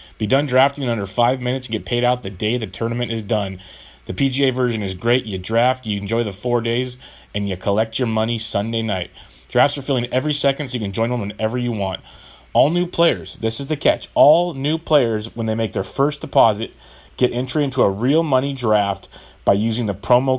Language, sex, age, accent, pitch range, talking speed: English, male, 30-49, American, 105-135 Hz, 225 wpm